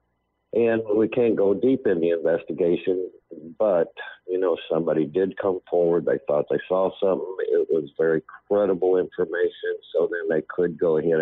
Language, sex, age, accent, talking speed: English, male, 50-69, American, 165 wpm